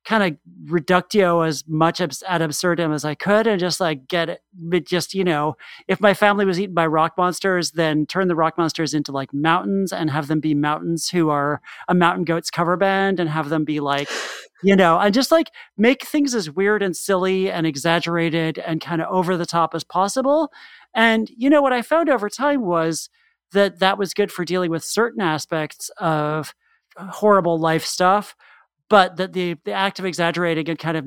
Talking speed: 205 wpm